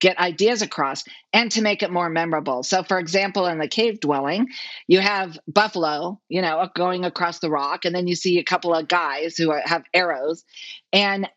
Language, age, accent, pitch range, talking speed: English, 40-59, American, 155-200 Hz, 200 wpm